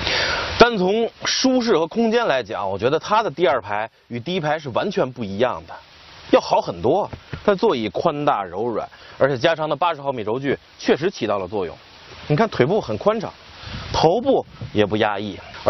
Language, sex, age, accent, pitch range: Chinese, male, 20-39, native, 120-185 Hz